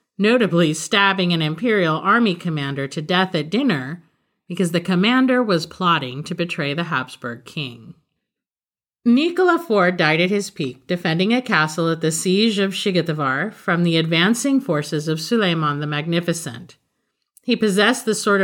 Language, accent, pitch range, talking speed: English, American, 155-215 Hz, 150 wpm